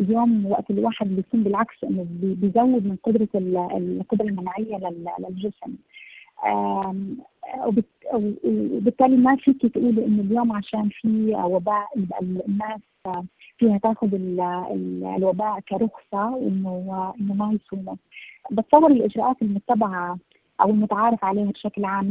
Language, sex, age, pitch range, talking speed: Arabic, female, 30-49, 195-220 Hz, 105 wpm